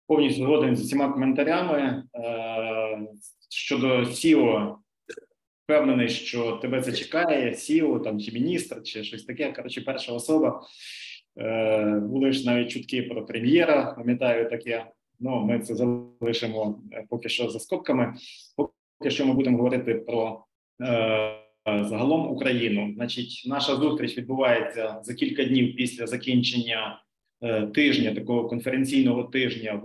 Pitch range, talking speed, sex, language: 110-135 Hz, 125 wpm, male, Ukrainian